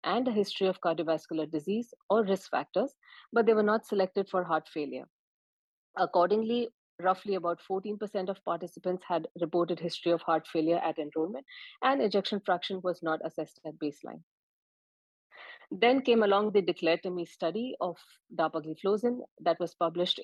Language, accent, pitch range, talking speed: English, Indian, 165-210 Hz, 155 wpm